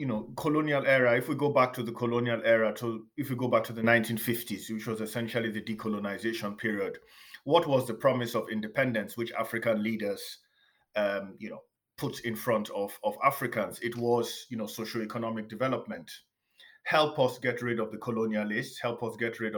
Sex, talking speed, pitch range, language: male, 185 wpm, 110-130 Hz, English